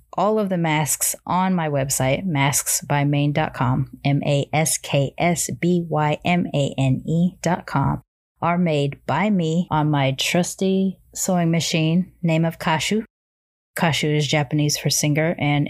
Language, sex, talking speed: English, female, 105 wpm